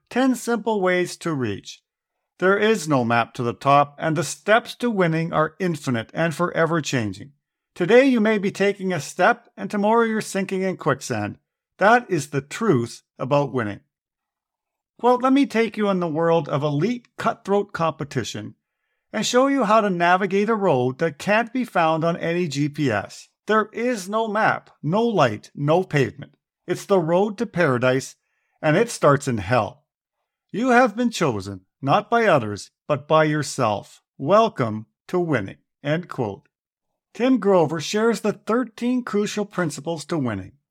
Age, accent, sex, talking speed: 50-69, American, male, 160 wpm